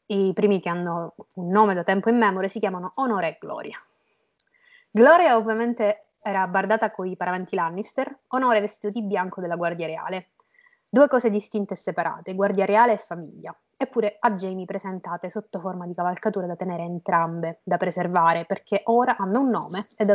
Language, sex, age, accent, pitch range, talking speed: Italian, female, 20-39, native, 180-220 Hz, 175 wpm